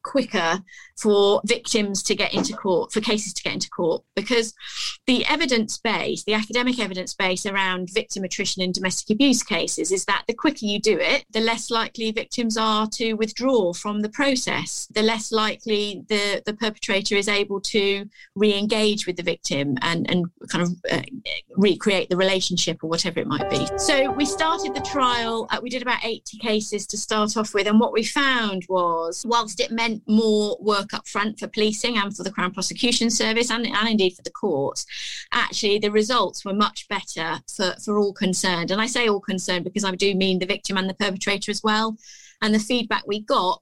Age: 30-49